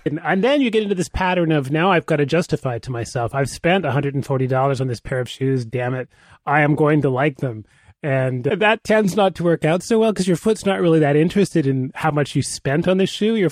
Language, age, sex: English, 30-49, male